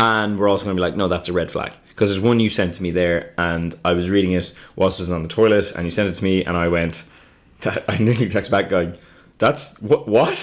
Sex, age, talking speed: male, 20-39, 280 wpm